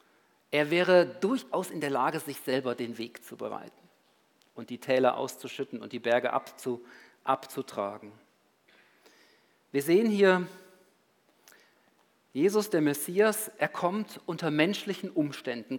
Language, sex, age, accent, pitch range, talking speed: German, male, 50-69, German, 145-215 Hz, 120 wpm